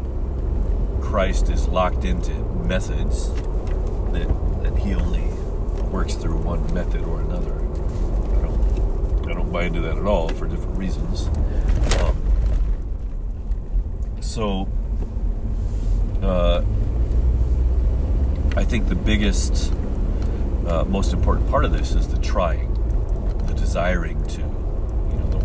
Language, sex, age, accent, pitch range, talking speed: English, male, 40-59, American, 65-100 Hz, 110 wpm